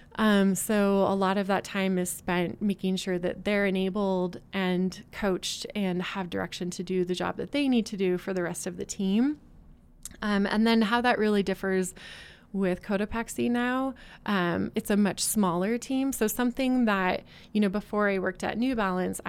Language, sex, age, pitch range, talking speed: English, female, 20-39, 180-205 Hz, 190 wpm